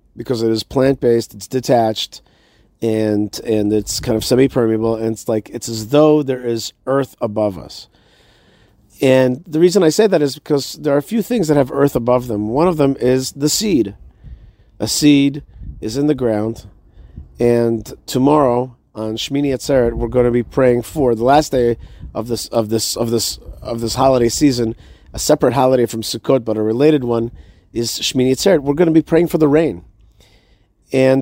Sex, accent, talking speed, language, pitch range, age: male, American, 190 wpm, English, 115-155 Hz, 40-59